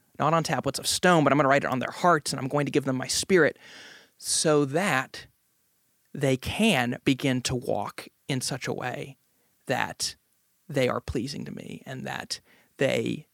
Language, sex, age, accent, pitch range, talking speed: English, male, 30-49, American, 130-170 Hz, 190 wpm